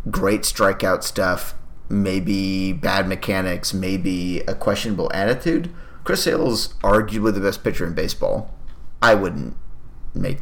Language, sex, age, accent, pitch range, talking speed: English, male, 30-49, American, 95-110 Hz, 125 wpm